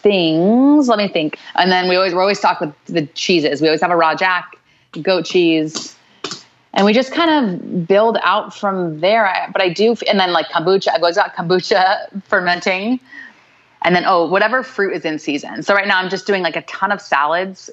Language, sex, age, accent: English, female, 30-49, American